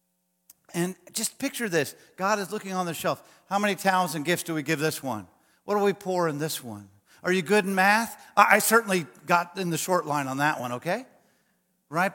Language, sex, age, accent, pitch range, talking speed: English, male, 50-69, American, 145-225 Hz, 215 wpm